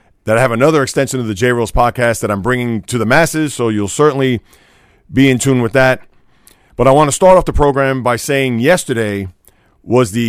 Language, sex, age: English, male, 40-59